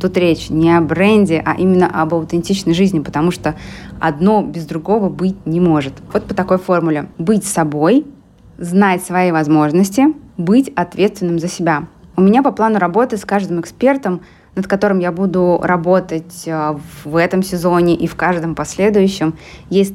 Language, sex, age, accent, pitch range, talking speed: Russian, female, 20-39, native, 165-195 Hz, 155 wpm